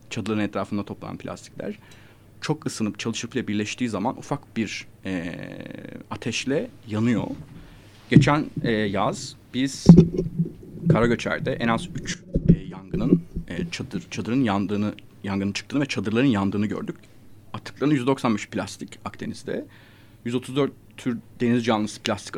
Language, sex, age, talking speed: Turkish, male, 30-49, 120 wpm